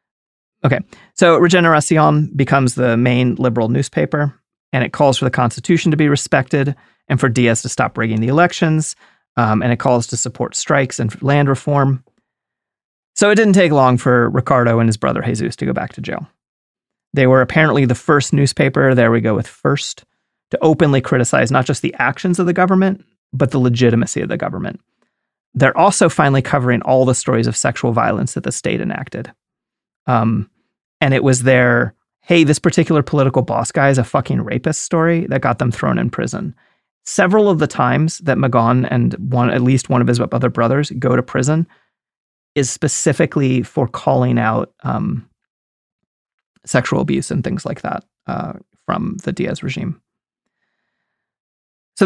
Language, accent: English, American